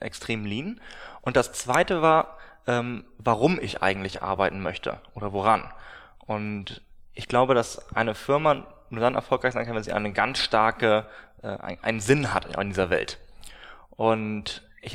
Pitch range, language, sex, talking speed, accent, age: 105-125 Hz, German, male, 155 wpm, German, 20-39